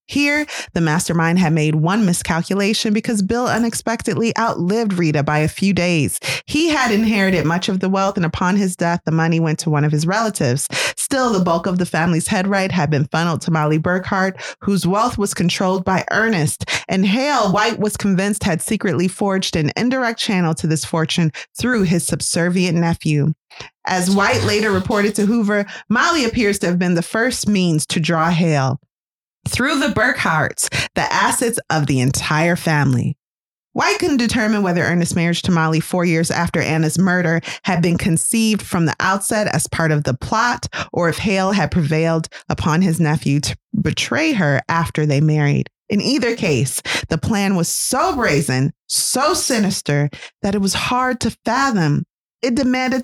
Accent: American